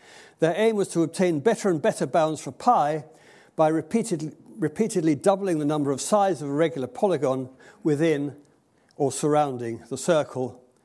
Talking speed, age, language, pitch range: 150 wpm, 60-79, English, 130-170 Hz